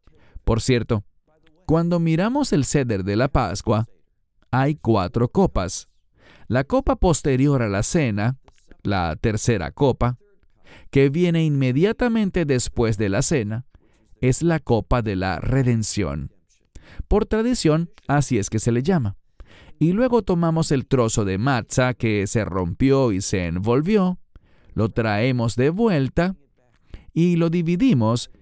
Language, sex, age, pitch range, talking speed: English, male, 40-59, 105-155 Hz, 130 wpm